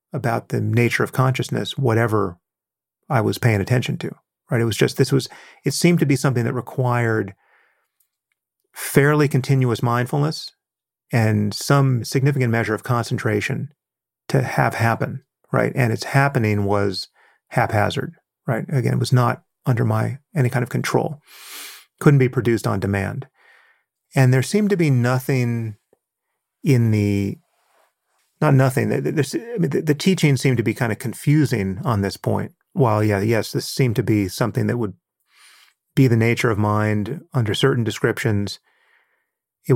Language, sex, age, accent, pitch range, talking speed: English, male, 40-59, American, 105-130 Hz, 150 wpm